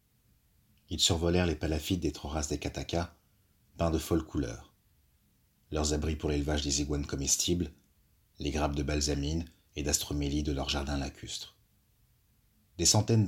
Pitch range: 75-95 Hz